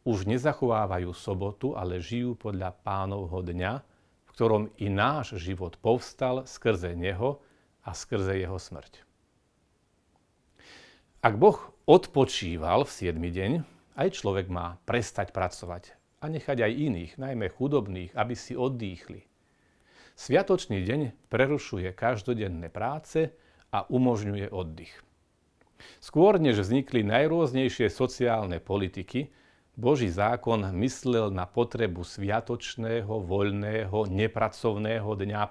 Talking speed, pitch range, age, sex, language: 105 wpm, 95-130 Hz, 40-59, male, Slovak